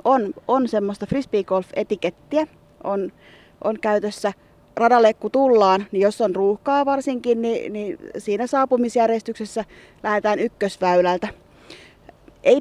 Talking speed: 110 wpm